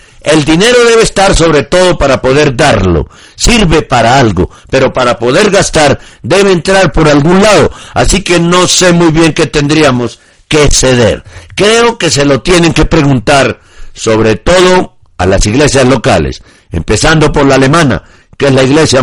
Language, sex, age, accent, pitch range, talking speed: Spanish, male, 60-79, Mexican, 120-165 Hz, 165 wpm